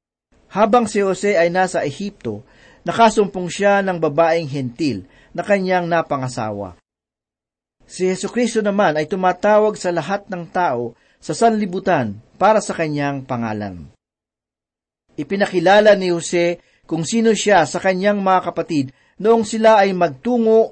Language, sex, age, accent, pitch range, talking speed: Filipino, male, 40-59, native, 145-200 Hz, 125 wpm